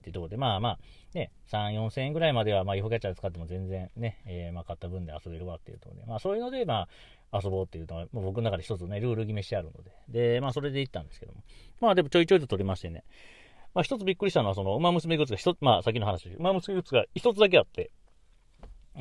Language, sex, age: Japanese, male, 40-59